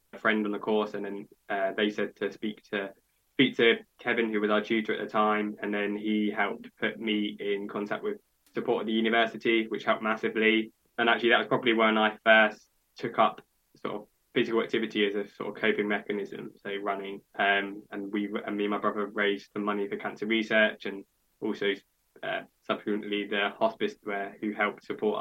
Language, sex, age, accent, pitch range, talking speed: English, male, 10-29, British, 105-115 Hz, 200 wpm